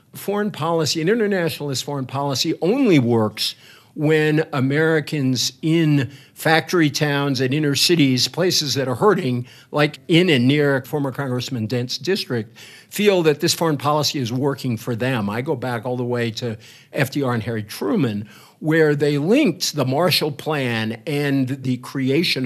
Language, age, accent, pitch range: English, 60-79, American, 130-165 Hz